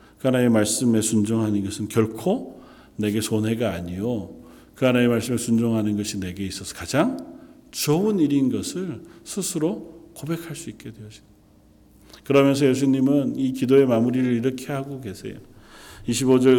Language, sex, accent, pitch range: Korean, male, native, 105-175 Hz